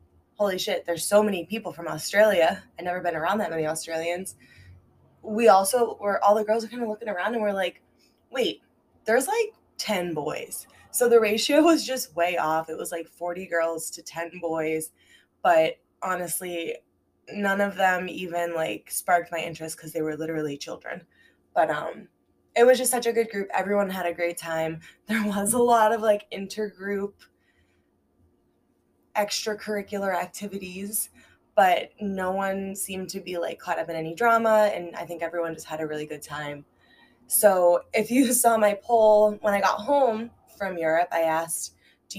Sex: female